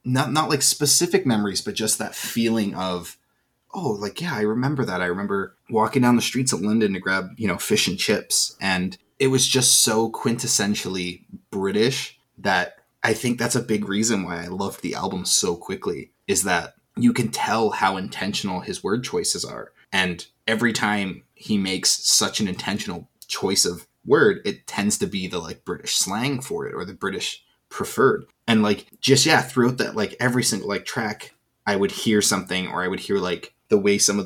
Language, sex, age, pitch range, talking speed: English, male, 20-39, 95-125 Hz, 195 wpm